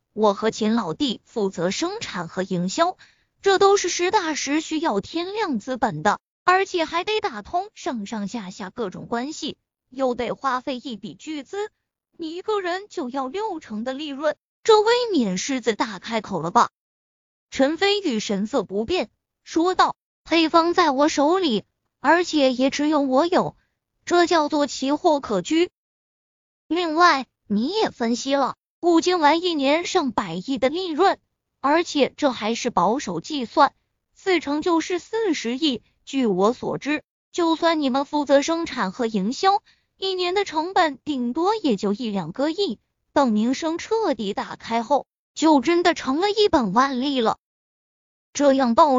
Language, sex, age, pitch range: Chinese, female, 20-39, 250-350 Hz